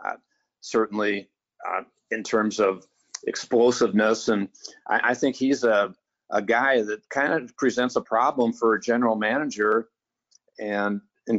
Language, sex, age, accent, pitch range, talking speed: English, male, 50-69, American, 105-125 Hz, 140 wpm